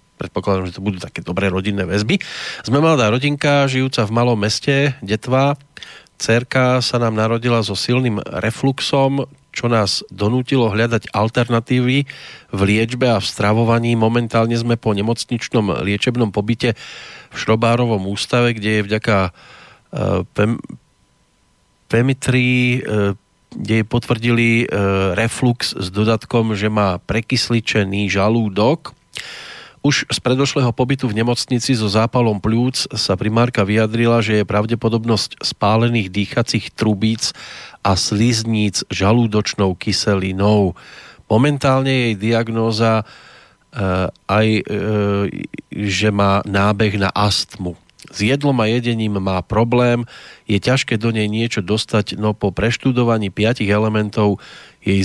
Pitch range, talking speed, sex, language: 105-120 Hz, 120 wpm, male, Slovak